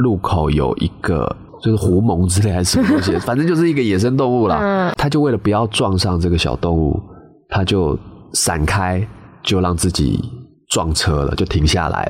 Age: 20-39